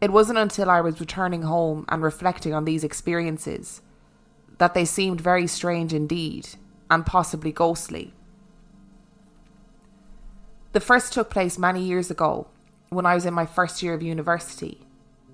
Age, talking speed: 20-39, 145 wpm